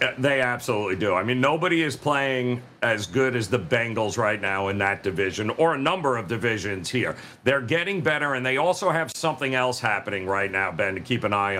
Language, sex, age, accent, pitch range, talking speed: English, male, 50-69, American, 130-170 Hz, 210 wpm